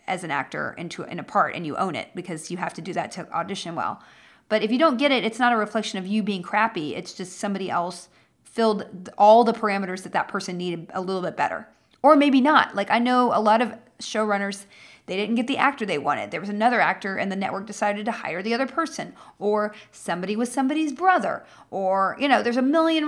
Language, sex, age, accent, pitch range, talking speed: English, female, 40-59, American, 185-235 Hz, 235 wpm